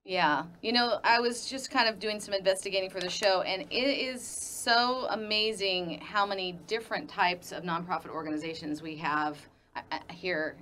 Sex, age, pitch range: female, 30-49, 160-215 Hz